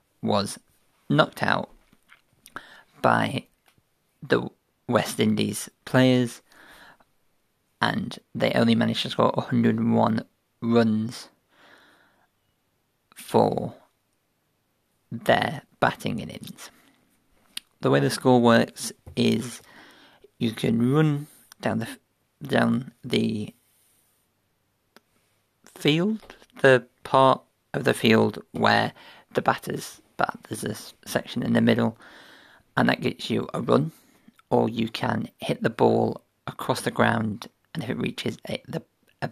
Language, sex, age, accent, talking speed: English, male, 40-59, British, 105 wpm